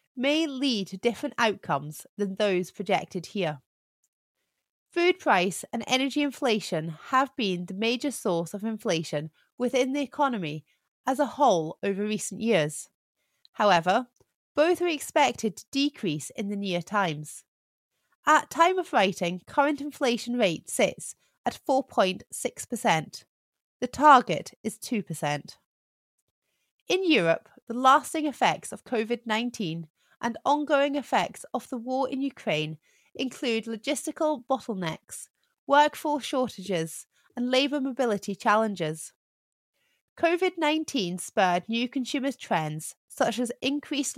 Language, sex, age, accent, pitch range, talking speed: English, female, 30-49, British, 190-280 Hz, 115 wpm